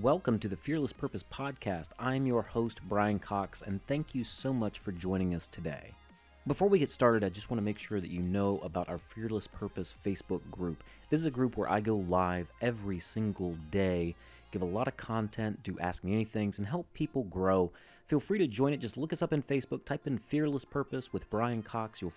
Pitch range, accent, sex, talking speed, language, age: 95-130 Hz, American, male, 220 wpm, English, 30-49